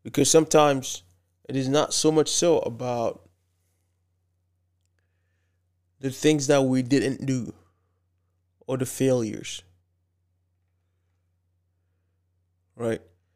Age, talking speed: 20-39, 85 wpm